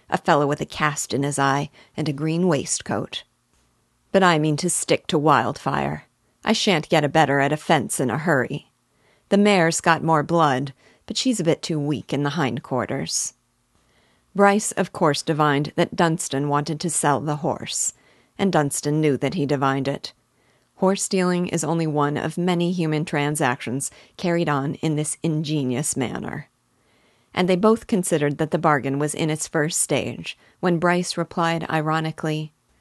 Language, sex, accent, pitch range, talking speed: English, female, American, 145-180 Hz, 170 wpm